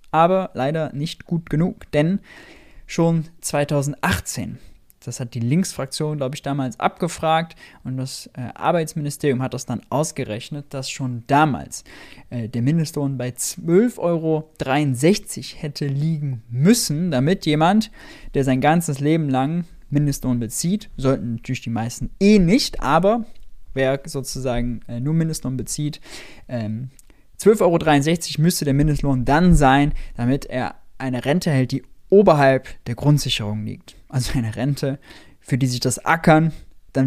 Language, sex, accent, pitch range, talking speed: German, male, German, 125-160 Hz, 135 wpm